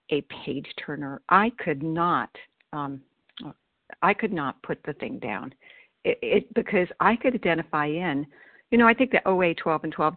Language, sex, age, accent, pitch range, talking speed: English, female, 60-79, American, 150-190 Hz, 170 wpm